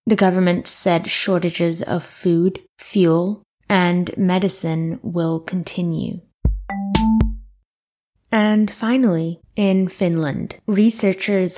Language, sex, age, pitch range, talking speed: English, female, 10-29, 175-205 Hz, 85 wpm